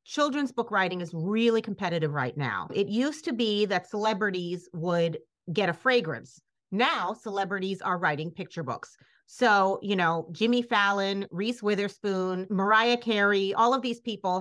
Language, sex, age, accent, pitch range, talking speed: English, female, 30-49, American, 175-220 Hz, 155 wpm